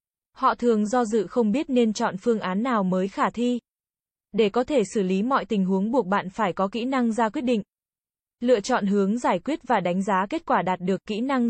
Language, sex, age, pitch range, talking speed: Vietnamese, female, 20-39, 200-245 Hz, 235 wpm